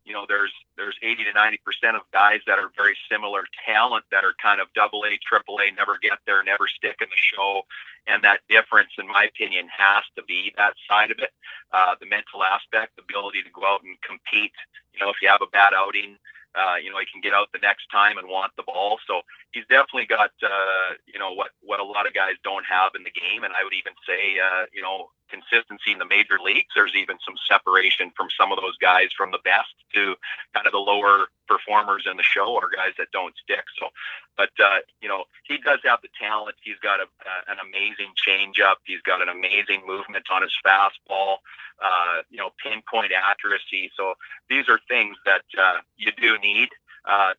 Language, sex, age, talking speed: English, male, 40-59, 215 wpm